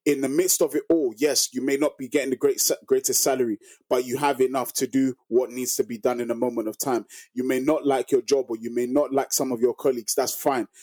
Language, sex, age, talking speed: English, male, 20-39, 270 wpm